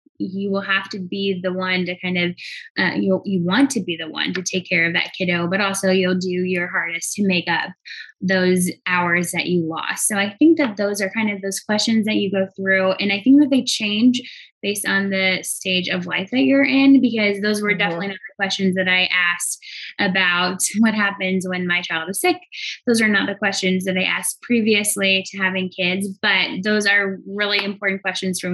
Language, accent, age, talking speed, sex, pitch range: English, American, 10-29, 215 wpm, female, 180-210 Hz